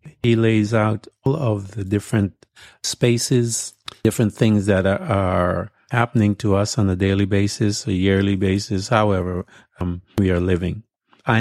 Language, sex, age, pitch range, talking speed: English, male, 50-69, 95-115 Hz, 155 wpm